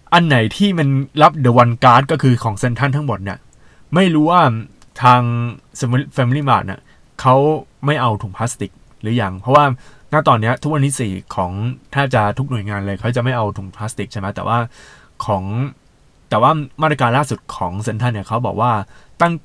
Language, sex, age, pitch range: Thai, male, 20-39, 105-135 Hz